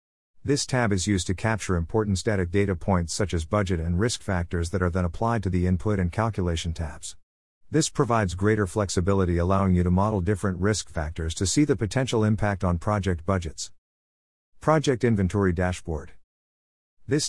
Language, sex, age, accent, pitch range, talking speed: English, male, 50-69, American, 85-110 Hz, 170 wpm